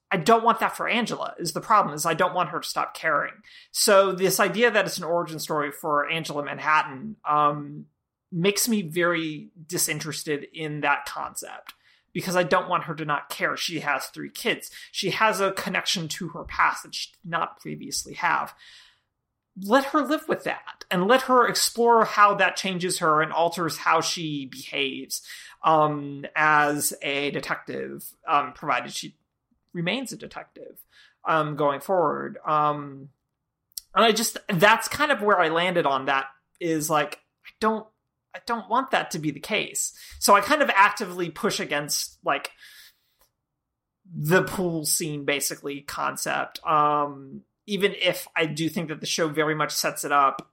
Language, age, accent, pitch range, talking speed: English, 30-49, American, 150-200 Hz, 170 wpm